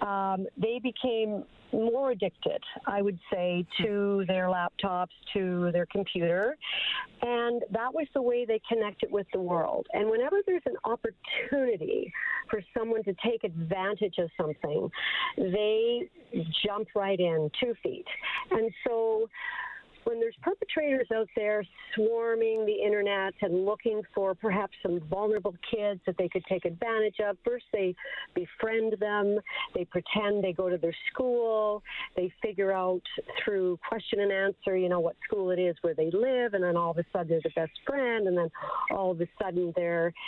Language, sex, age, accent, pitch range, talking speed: English, female, 50-69, American, 180-240 Hz, 160 wpm